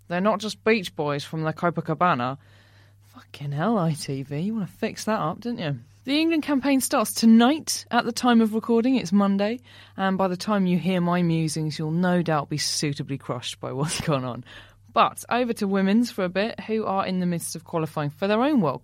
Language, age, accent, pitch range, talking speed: English, 20-39, British, 145-225 Hz, 220 wpm